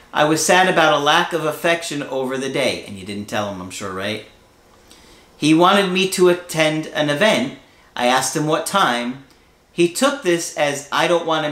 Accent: American